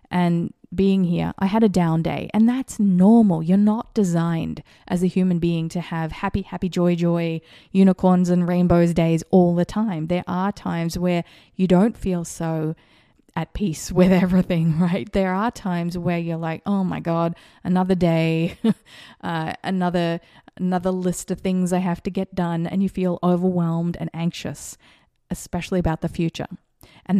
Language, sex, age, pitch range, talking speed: English, female, 20-39, 170-190 Hz, 170 wpm